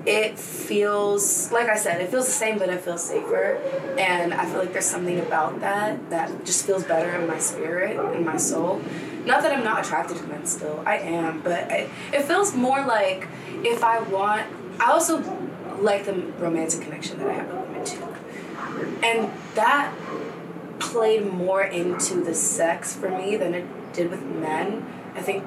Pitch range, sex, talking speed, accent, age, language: 170-210 Hz, female, 185 wpm, American, 20-39, English